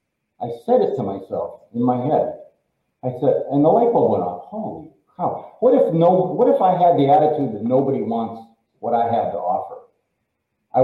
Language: English